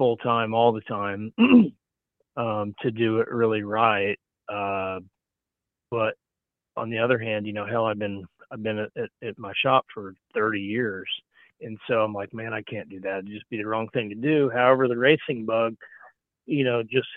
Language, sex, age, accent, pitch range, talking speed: English, male, 40-59, American, 100-120 Hz, 190 wpm